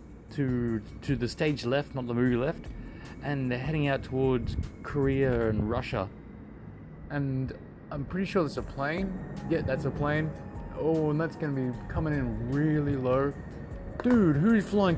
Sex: male